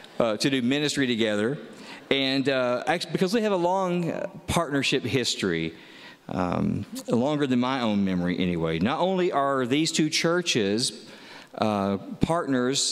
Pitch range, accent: 105-145 Hz, American